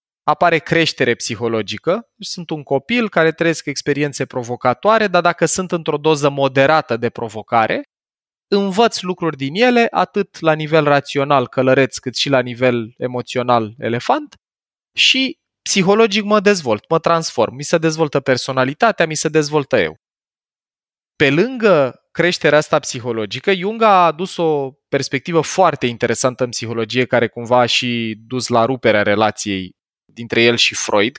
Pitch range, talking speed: 120-170 Hz, 140 wpm